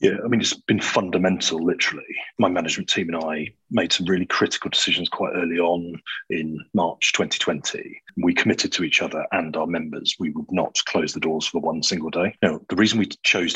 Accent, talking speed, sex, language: British, 205 wpm, male, English